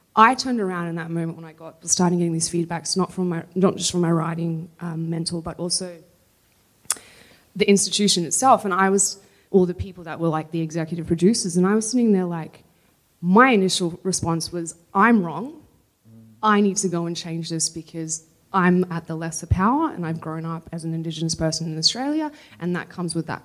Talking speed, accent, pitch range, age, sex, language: 205 wpm, Australian, 165-195 Hz, 20-39, female, English